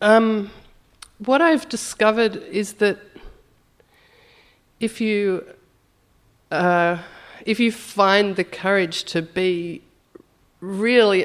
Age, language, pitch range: 50-69, English, 165-220 Hz